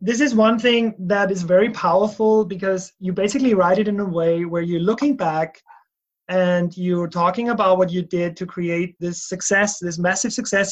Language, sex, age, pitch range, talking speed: English, male, 30-49, 175-205 Hz, 190 wpm